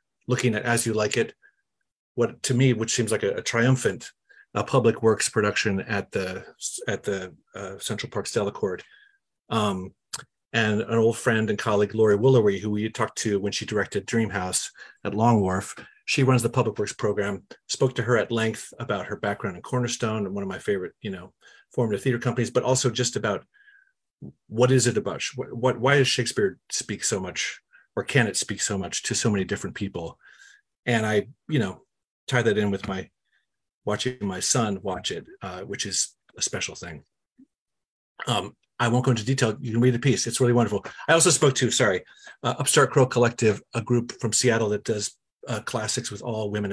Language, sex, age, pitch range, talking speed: English, male, 40-59, 105-125 Hz, 200 wpm